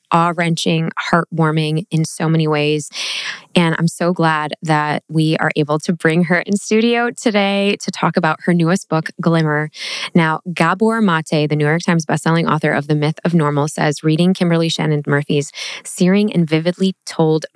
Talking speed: 175 wpm